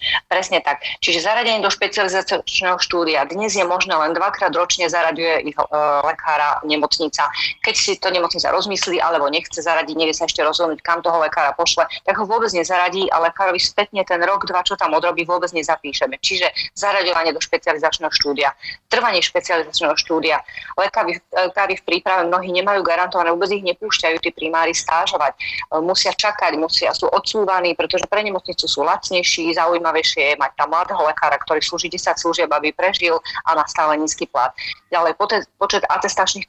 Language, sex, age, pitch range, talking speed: Slovak, female, 30-49, 160-185 Hz, 165 wpm